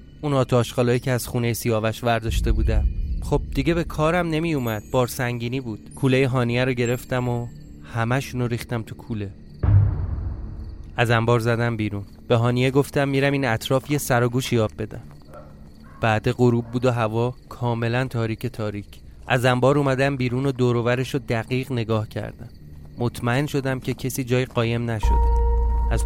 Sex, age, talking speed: male, 30-49, 155 wpm